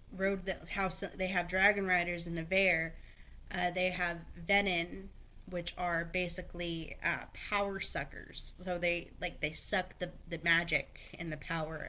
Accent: American